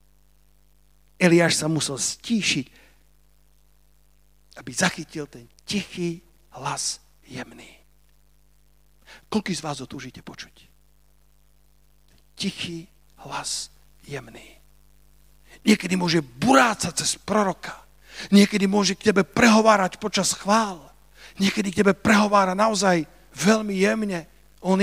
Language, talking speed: Slovak, 90 wpm